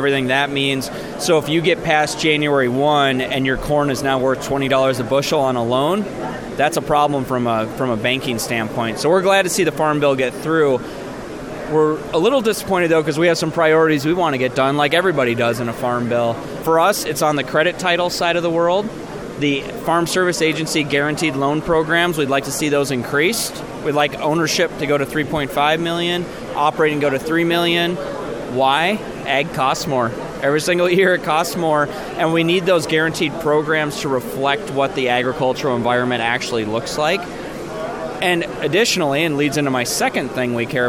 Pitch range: 130-165 Hz